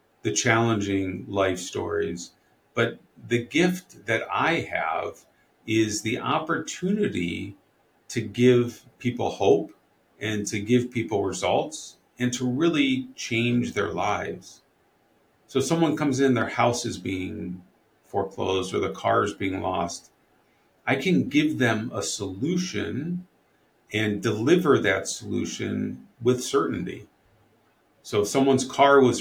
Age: 50-69